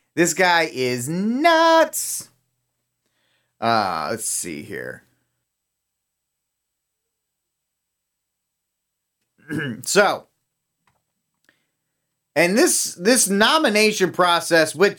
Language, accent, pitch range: English, American, 125-165 Hz